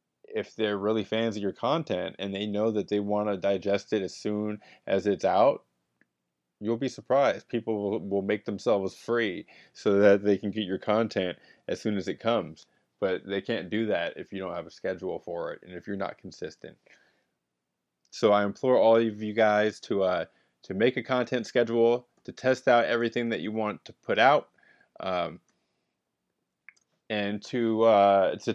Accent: American